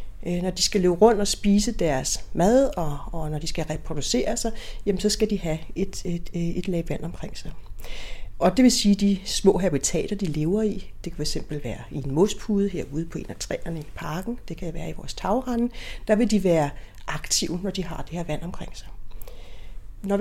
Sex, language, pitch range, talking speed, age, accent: female, Danish, 160-210 Hz, 215 wpm, 40-59, native